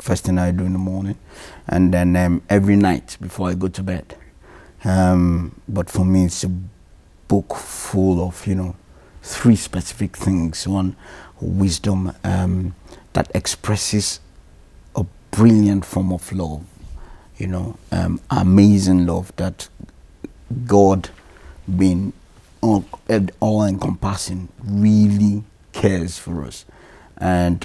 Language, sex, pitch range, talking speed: English, male, 90-100 Hz, 120 wpm